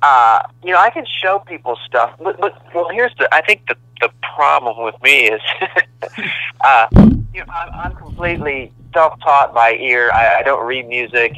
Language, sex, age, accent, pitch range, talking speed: English, male, 40-59, American, 120-150 Hz, 175 wpm